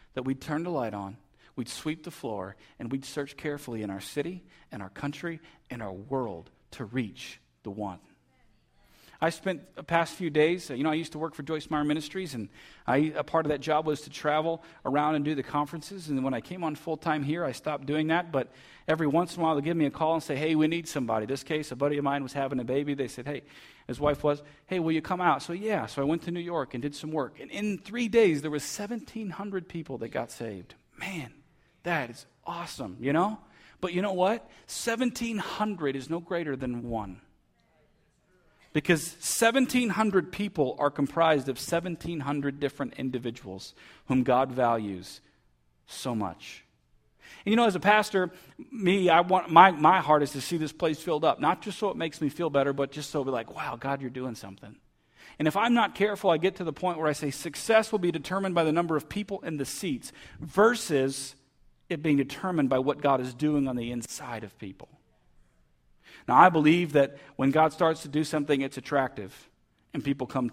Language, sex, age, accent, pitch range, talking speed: English, male, 40-59, American, 130-170 Hz, 215 wpm